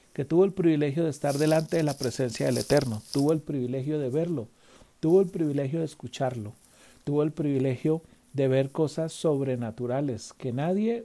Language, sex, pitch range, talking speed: Spanish, male, 130-160 Hz, 170 wpm